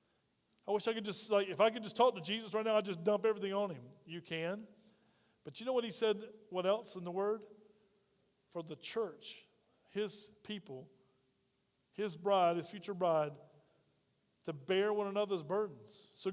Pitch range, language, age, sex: 165-210 Hz, English, 40-59, male